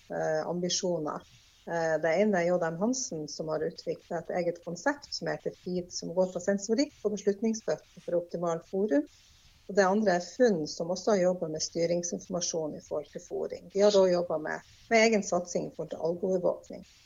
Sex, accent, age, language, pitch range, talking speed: female, Swedish, 50-69, English, 170-205 Hz, 175 wpm